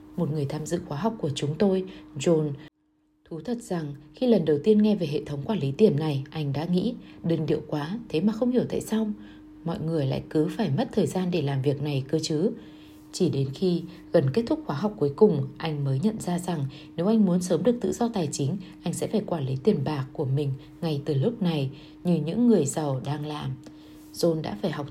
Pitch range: 150-195 Hz